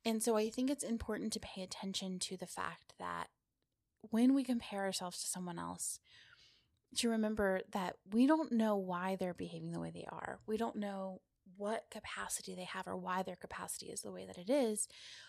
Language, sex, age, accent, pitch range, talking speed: English, female, 20-39, American, 190-235 Hz, 195 wpm